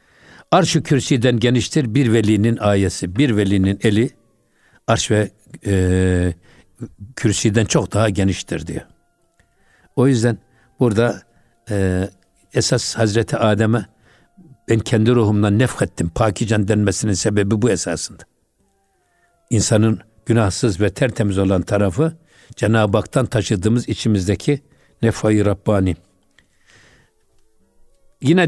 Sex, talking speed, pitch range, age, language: male, 95 wpm, 105-130 Hz, 60-79, Turkish